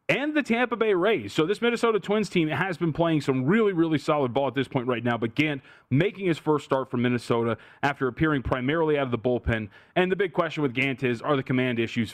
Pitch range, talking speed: 125-155 Hz, 240 wpm